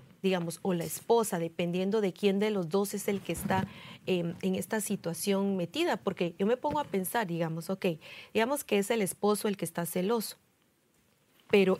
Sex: female